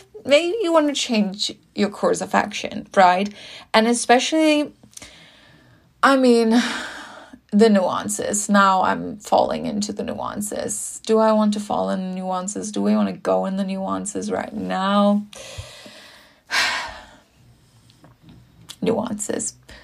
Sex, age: female, 30-49